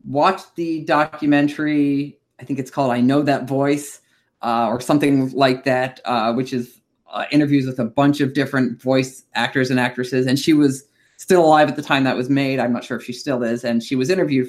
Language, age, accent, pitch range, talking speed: English, 30-49, American, 130-175 Hz, 215 wpm